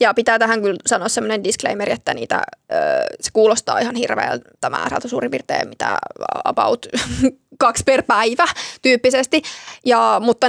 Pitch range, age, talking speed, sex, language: 235-265 Hz, 20-39, 135 wpm, female, Finnish